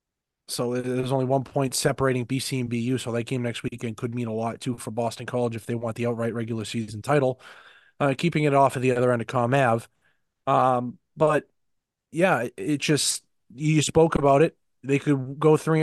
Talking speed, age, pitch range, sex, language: 210 wpm, 20-39, 120-140 Hz, male, English